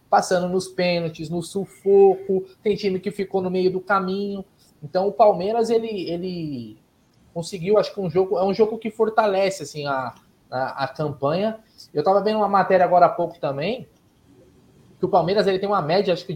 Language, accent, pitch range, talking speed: Portuguese, Brazilian, 155-200 Hz, 185 wpm